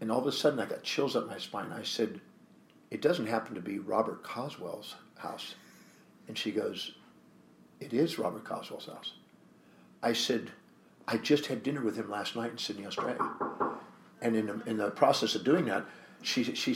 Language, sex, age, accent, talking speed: English, male, 50-69, American, 190 wpm